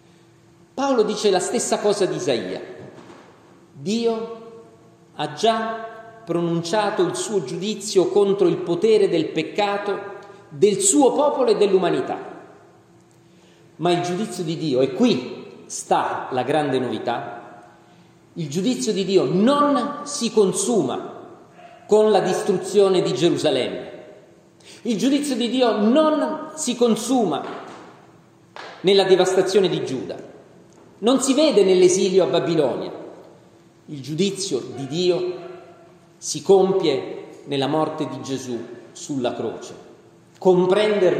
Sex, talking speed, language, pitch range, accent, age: male, 110 wpm, Italian, 165-230 Hz, native, 40-59